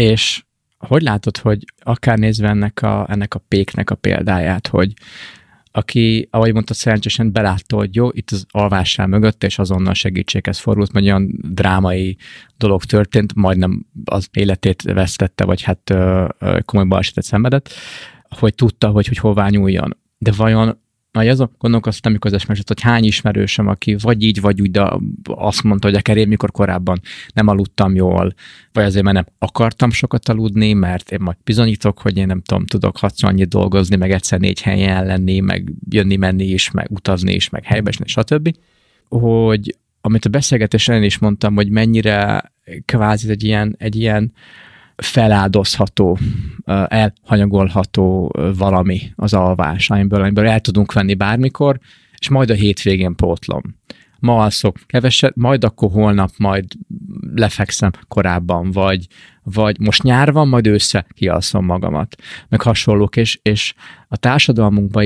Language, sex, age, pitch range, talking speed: Hungarian, male, 20-39, 95-110 Hz, 150 wpm